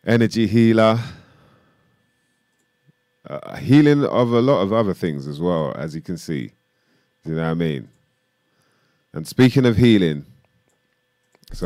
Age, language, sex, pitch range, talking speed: 30-49, English, male, 75-95 Hz, 140 wpm